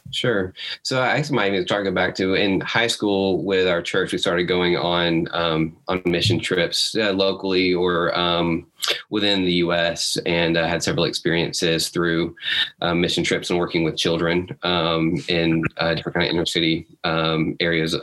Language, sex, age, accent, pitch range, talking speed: English, male, 20-39, American, 85-95 Hz, 185 wpm